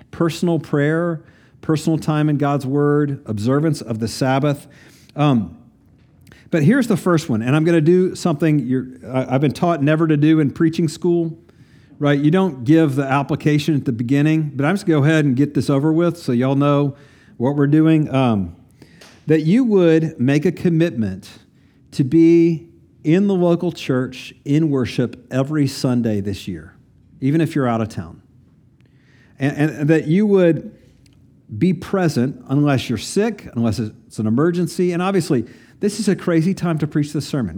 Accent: American